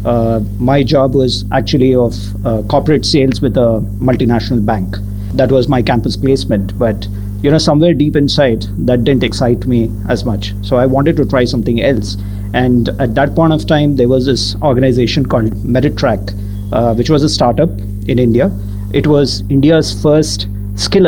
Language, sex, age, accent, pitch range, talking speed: English, male, 50-69, Indian, 100-135 Hz, 170 wpm